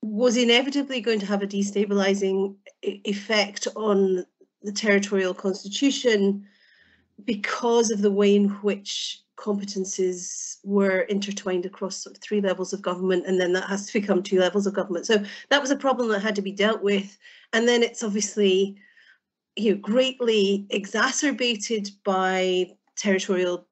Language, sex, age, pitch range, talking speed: English, female, 40-59, 190-235 Hz, 150 wpm